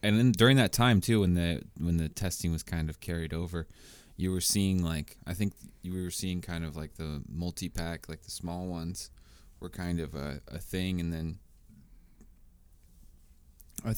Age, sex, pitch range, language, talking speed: 20-39, male, 80-95 Hz, English, 190 wpm